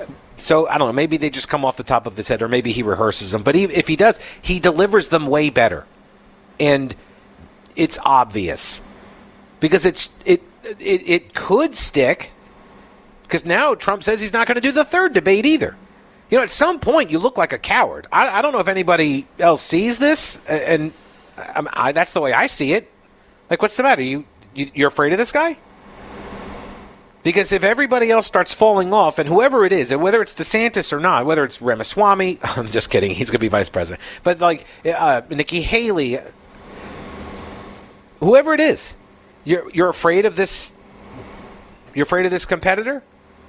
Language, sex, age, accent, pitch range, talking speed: English, male, 50-69, American, 150-215 Hz, 190 wpm